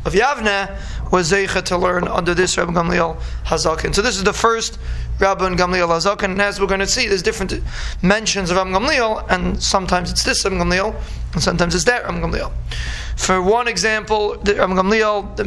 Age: 20-39